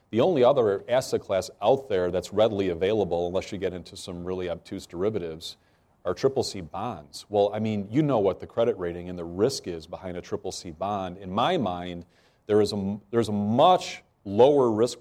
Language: English